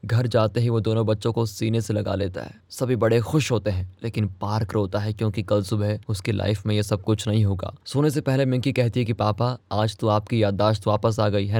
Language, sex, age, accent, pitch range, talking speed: Hindi, male, 20-39, native, 105-135 Hz, 250 wpm